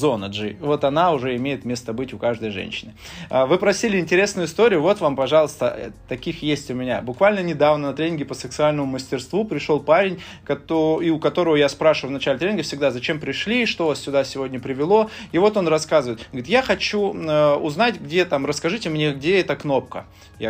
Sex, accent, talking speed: male, native, 180 wpm